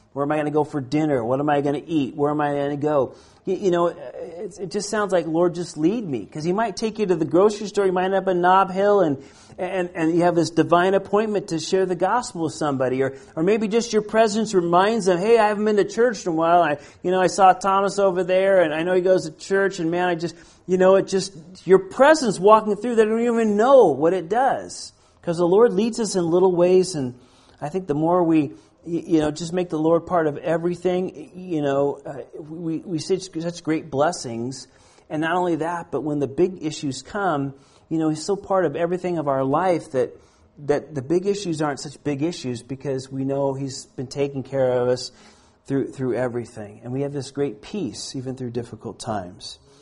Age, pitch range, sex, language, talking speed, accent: 40-59, 140-185 Hz, male, Finnish, 230 wpm, American